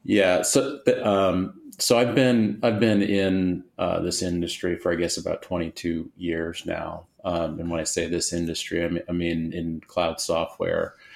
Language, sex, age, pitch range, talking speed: English, male, 30-49, 85-95 Hz, 165 wpm